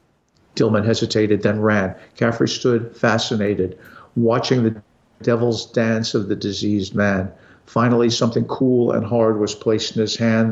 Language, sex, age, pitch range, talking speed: English, male, 50-69, 105-120 Hz, 145 wpm